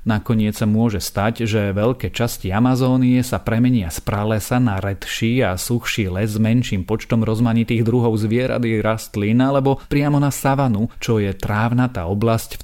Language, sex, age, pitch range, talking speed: Slovak, male, 30-49, 105-120 Hz, 160 wpm